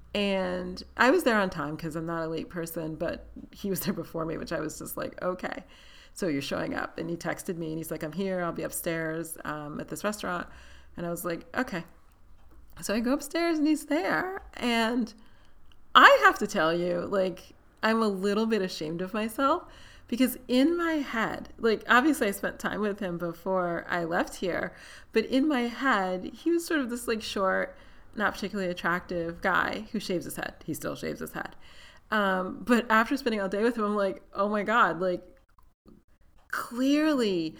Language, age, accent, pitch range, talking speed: English, 30-49, American, 170-235 Hz, 200 wpm